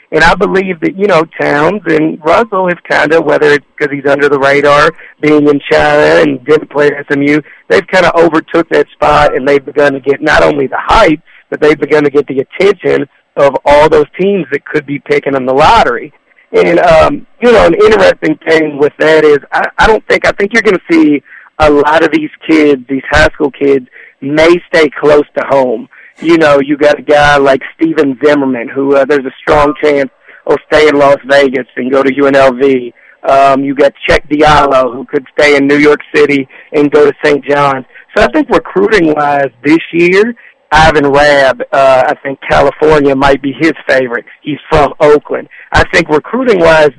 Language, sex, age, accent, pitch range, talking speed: English, male, 40-59, American, 140-160 Hz, 200 wpm